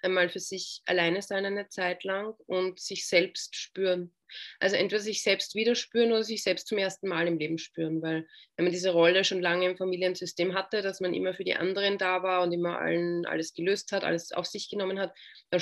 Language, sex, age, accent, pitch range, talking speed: German, female, 20-39, German, 170-195 Hz, 220 wpm